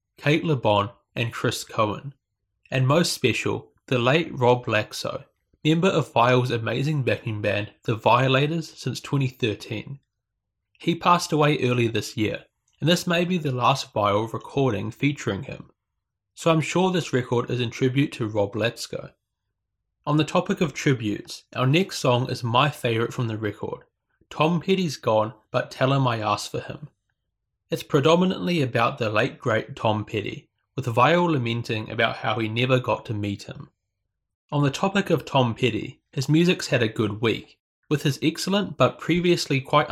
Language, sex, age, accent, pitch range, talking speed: English, male, 20-39, Australian, 110-150 Hz, 165 wpm